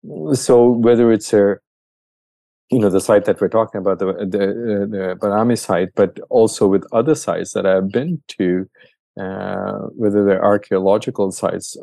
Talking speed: 155 wpm